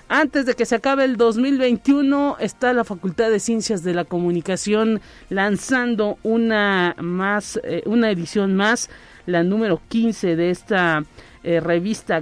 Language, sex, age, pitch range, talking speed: Spanish, male, 40-59, 175-220 Hz, 140 wpm